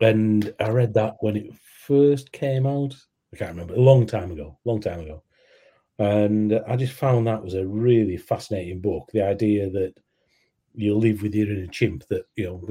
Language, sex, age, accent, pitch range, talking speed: English, male, 40-59, British, 95-110 Hz, 200 wpm